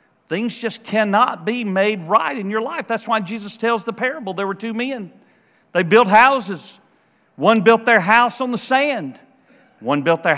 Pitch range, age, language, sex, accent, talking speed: 170-235 Hz, 40-59, English, male, American, 185 wpm